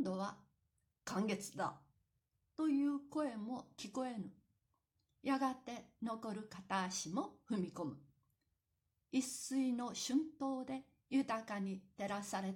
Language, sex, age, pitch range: Japanese, female, 60-79, 190-275 Hz